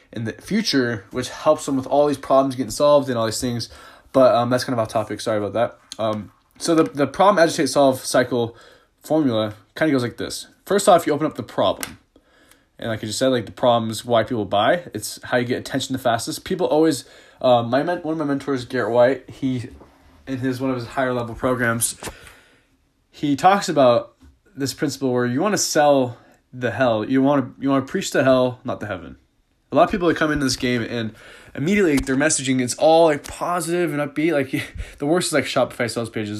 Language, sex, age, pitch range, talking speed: English, male, 20-39, 120-155 Hz, 230 wpm